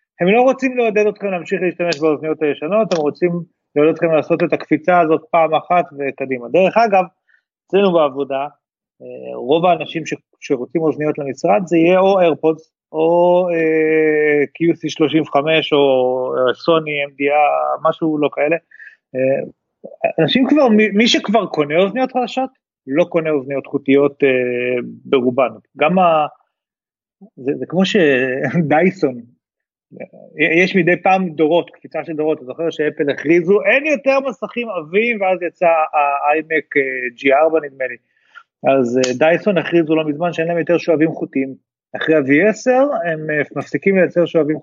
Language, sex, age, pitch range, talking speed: Hebrew, male, 30-49, 145-180 Hz, 135 wpm